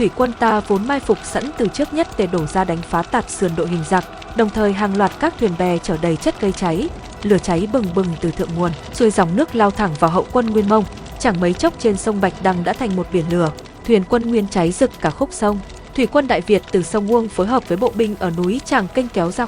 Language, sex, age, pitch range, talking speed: Vietnamese, female, 20-39, 180-235 Hz, 270 wpm